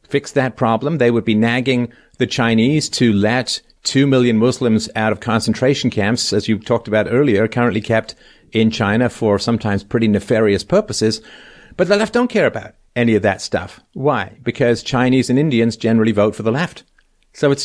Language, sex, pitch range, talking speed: English, male, 105-130 Hz, 185 wpm